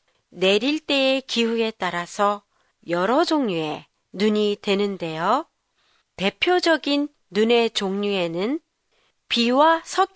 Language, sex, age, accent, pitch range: Japanese, female, 40-59, Korean, 190-290 Hz